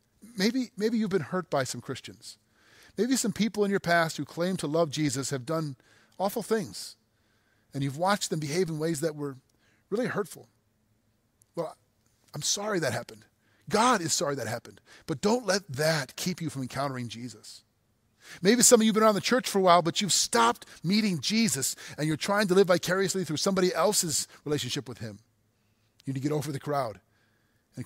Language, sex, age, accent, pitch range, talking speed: English, male, 30-49, American, 115-185 Hz, 195 wpm